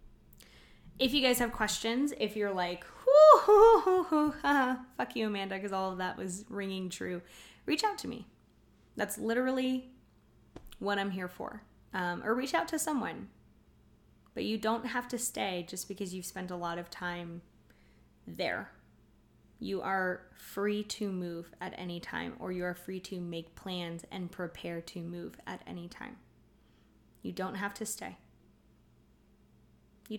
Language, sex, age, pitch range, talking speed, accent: English, female, 20-39, 180-230 Hz, 155 wpm, American